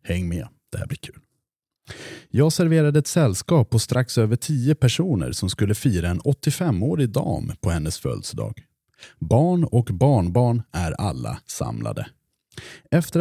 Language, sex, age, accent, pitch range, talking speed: English, male, 30-49, Norwegian, 115-170 Hz, 140 wpm